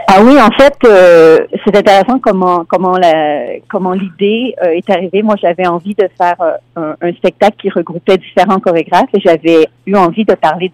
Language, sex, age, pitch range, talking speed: French, female, 40-59, 165-195 Hz, 190 wpm